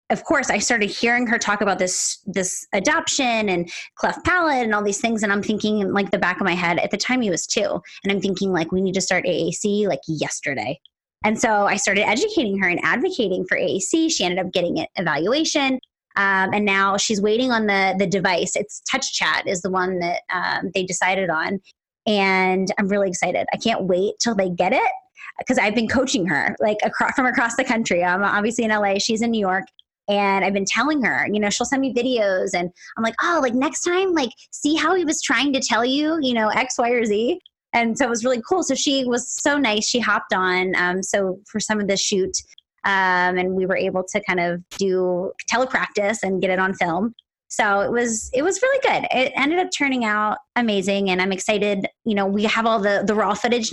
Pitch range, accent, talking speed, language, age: 190-245 Hz, American, 230 wpm, English, 20-39